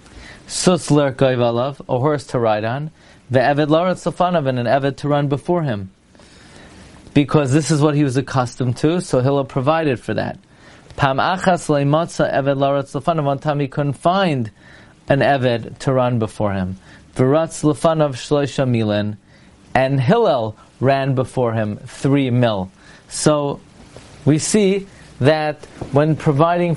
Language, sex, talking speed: English, male, 110 wpm